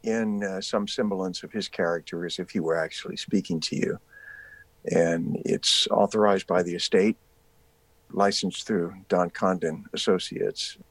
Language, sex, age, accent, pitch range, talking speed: English, male, 50-69, American, 90-120 Hz, 145 wpm